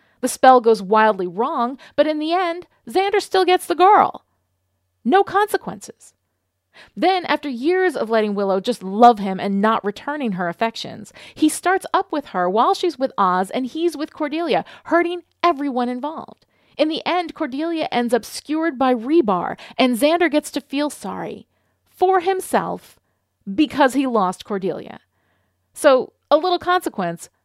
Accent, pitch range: American, 205-315 Hz